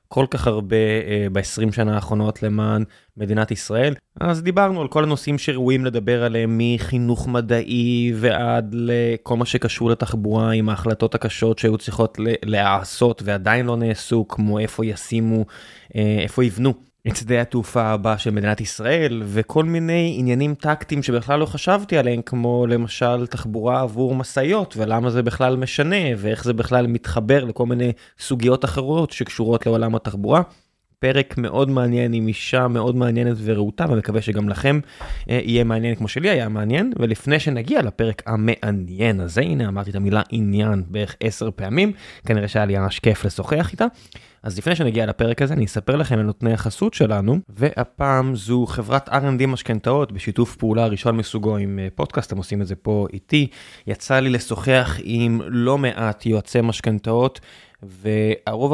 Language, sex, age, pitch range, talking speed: Hebrew, male, 20-39, 110-130 Hz, 150 wpm